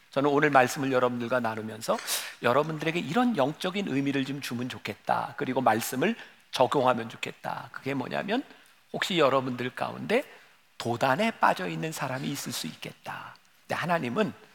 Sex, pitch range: male, 120-185 Hz